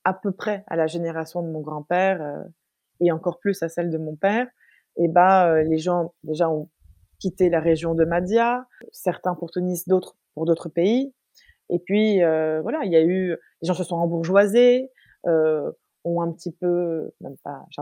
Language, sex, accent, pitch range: French, female, French, 160-200 Hz